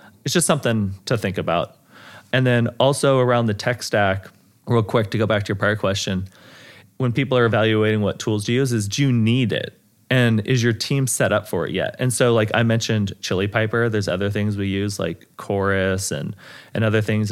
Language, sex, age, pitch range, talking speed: English, male, 30-49, 100-120 Hz, 220 wpm